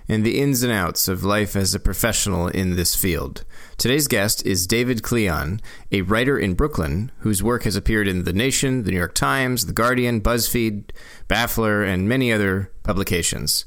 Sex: male